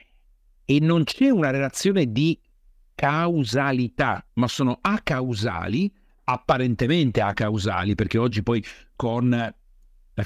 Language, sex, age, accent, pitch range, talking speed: Italian, male, 50-69, native, 110-150 Hz, 105 wpm